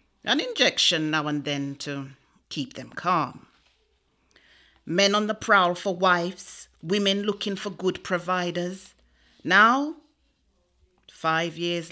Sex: female